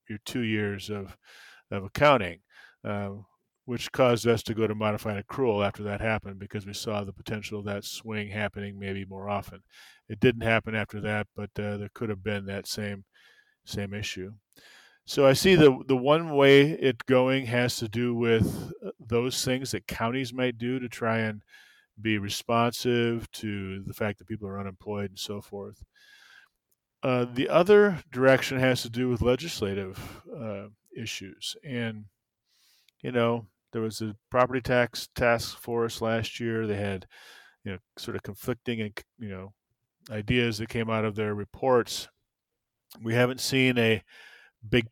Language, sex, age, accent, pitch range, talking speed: English, male, 40-59, American, 105-125 Hz, 165 wpm